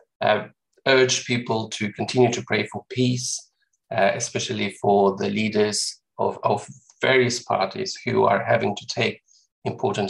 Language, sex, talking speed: English, male, 145 wpm